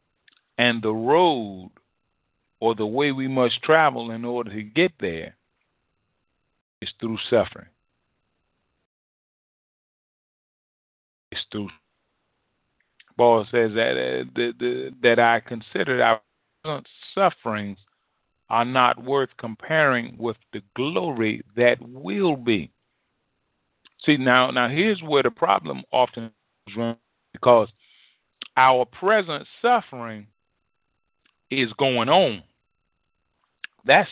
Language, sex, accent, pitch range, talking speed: English, male, American, 110-135 Hz, 100 wpm